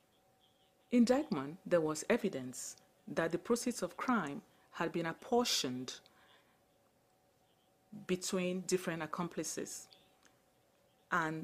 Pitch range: 165-215 Hz